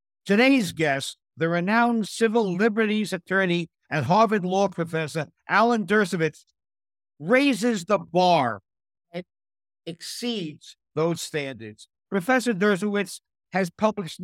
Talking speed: 100 wpm